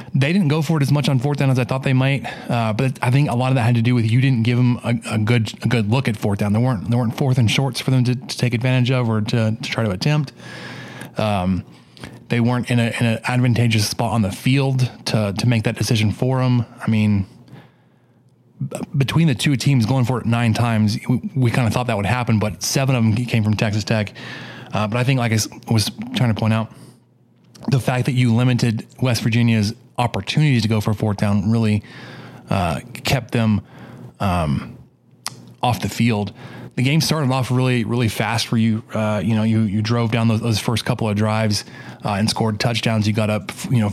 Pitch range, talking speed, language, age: 110-125 Hz, 235 wpm, English, 20-39